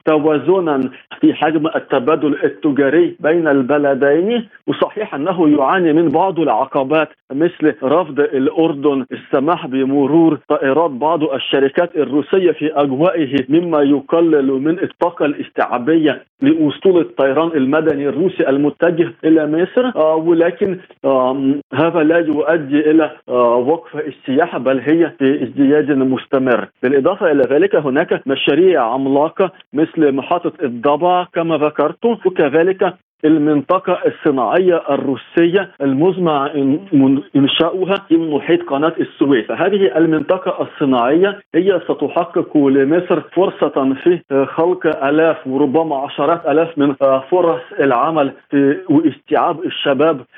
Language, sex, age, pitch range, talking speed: Arabic, male, 50-69, 145-180 Hz, 105 wpm